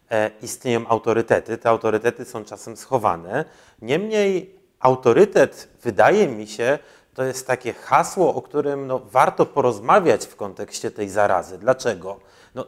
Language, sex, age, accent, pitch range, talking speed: Polish, male, 30-49, native, 110-130 Hz, 135 wpm